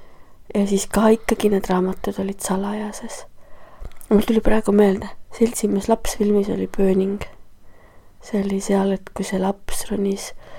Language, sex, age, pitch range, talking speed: English, female, 20-39, 200-220 Hz, 130 wpm